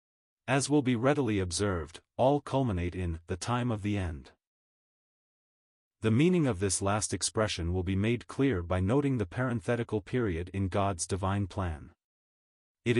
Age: 30-49